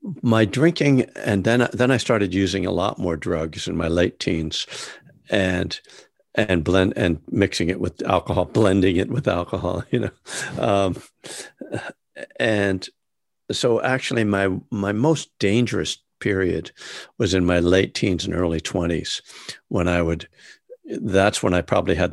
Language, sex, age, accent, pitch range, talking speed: English, male, 60-79, American, 90-115 Hz, 150 wpm